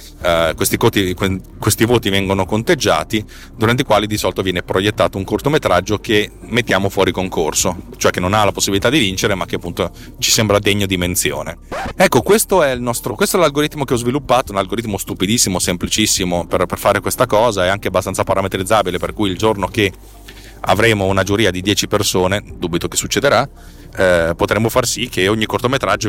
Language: Italian